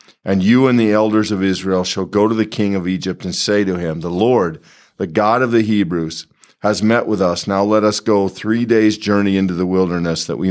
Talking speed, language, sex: 235 wpm, English, male